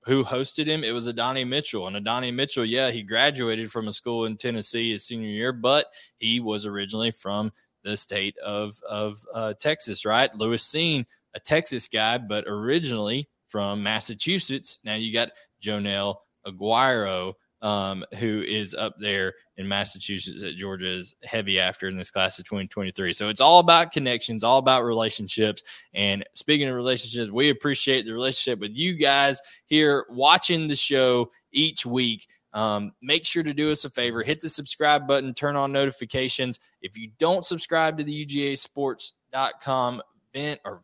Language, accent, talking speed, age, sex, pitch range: English, American, 165 wpm, 20-39, male, 110-140 Hz